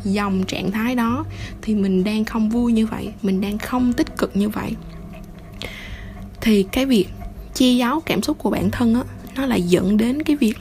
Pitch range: 180-230 Hz